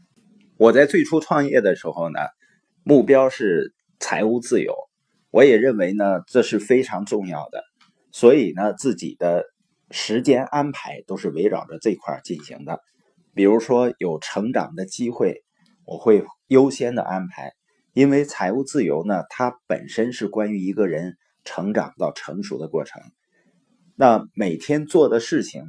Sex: male